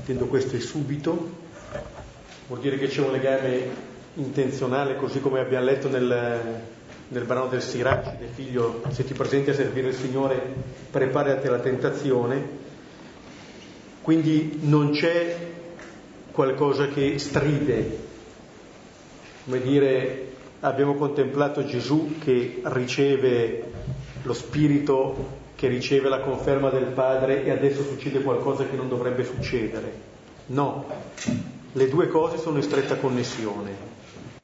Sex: male